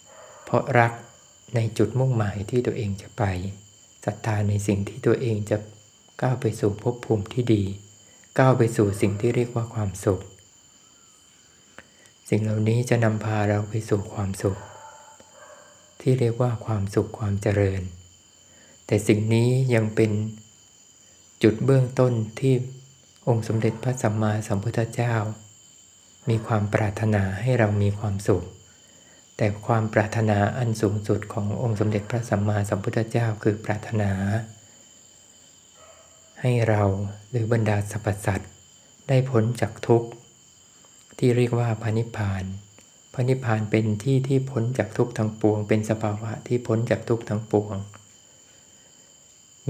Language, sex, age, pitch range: Thai, male, 60-79, 105-115 Hz